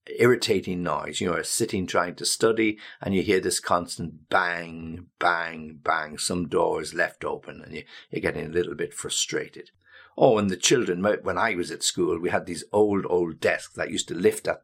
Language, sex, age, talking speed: English, male, 60-79, 195 wpm